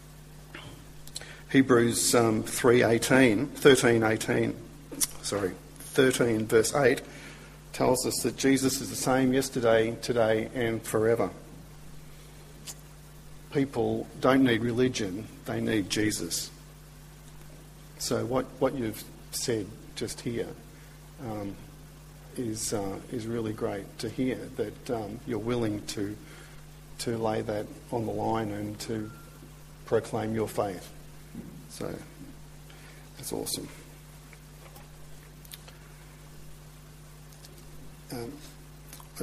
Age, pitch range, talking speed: 50-69, 115-150 Hz, 95 wpm